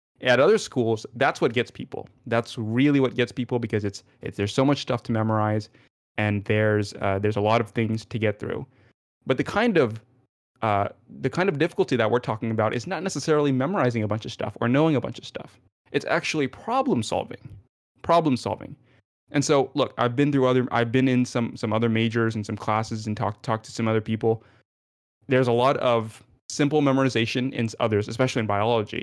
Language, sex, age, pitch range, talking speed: English, male, 20-39, 110-130 Hz, 205 wpm